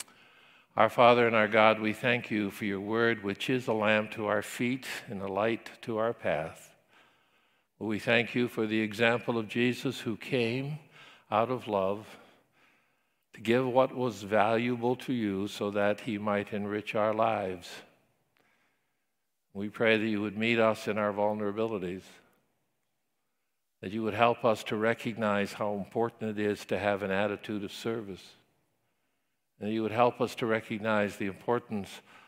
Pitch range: 100-115 Hz